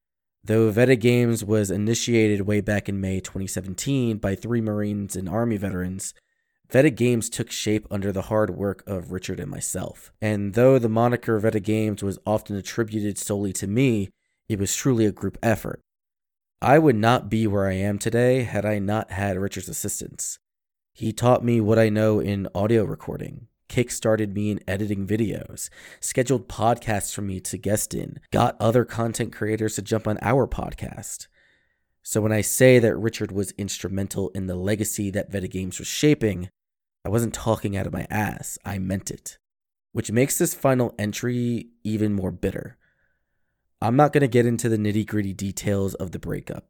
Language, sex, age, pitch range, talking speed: English, male, 20-39, 100-115 Hz, 175 wpm